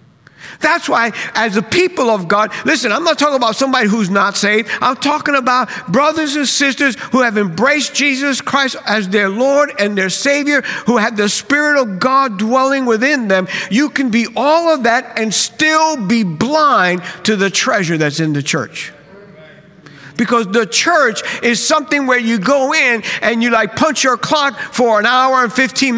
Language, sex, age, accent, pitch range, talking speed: English, male, 50-69, American, 170-265 Hz, 180 wpm